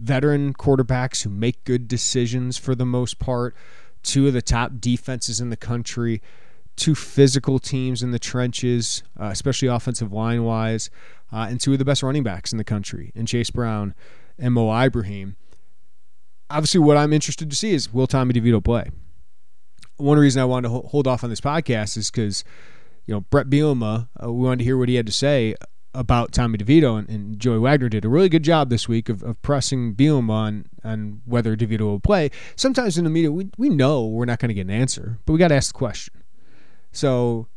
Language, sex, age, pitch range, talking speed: English, male, 30-49, 115-140 Hz, 200 wpm